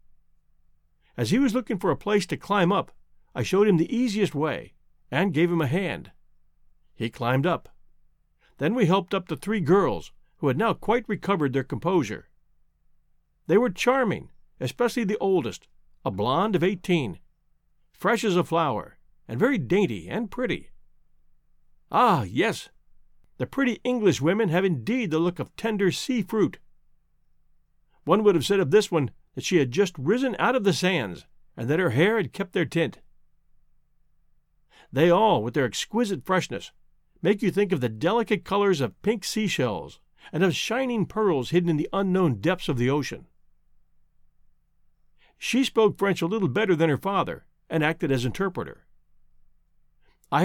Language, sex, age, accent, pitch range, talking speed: English, male, 50-69, American, 135-205 Hz, 160 wpm